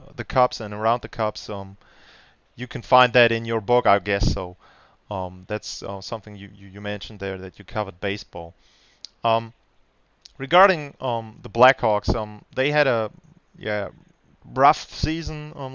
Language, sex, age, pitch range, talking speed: German, male, 20-39, 110-135 Hz, 165 wpm